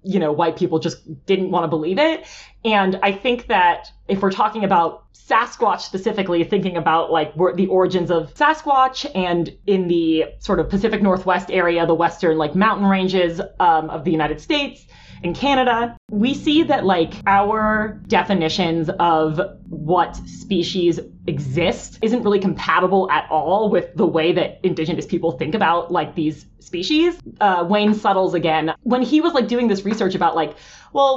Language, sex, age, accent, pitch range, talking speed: English, female, 20-39, American, 170-225 Hz, 170 wpm